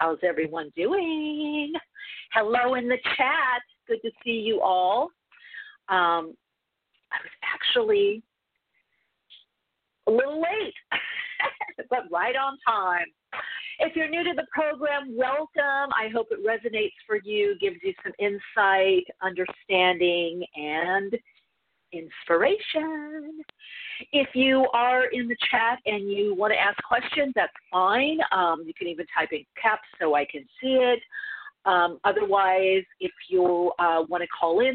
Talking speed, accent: 135 wpm, American